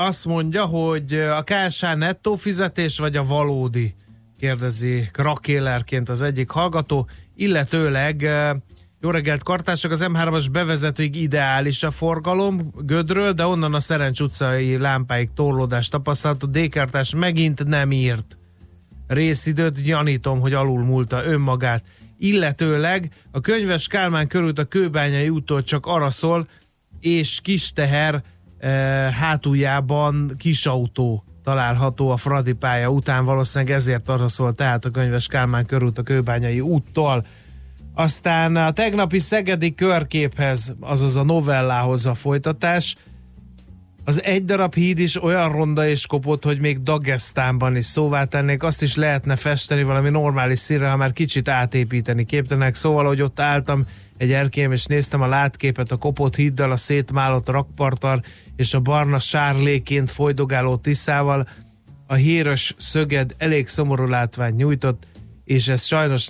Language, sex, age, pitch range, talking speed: Hungarian, male, 30-49, 130-155 Hz, 130 wpm